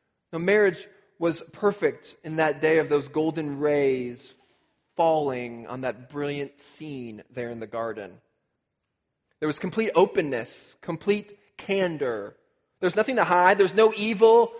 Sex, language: male, English